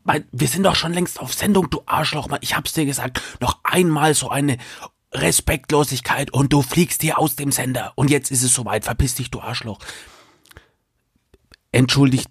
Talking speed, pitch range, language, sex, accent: 170 wpm, 115-130 Hz, German, male, German